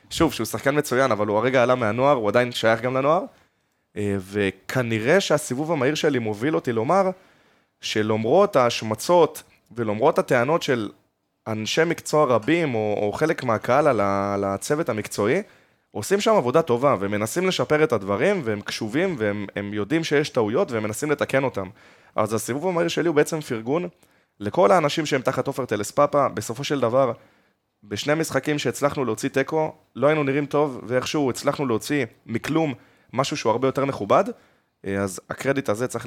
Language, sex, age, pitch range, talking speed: Hebrew, male, 20-39, 105-145 Hz, 155 wpm